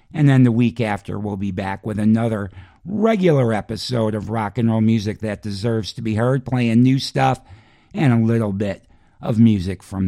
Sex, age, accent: male, 50-69, American